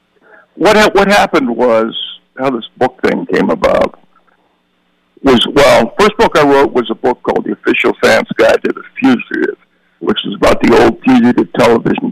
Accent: American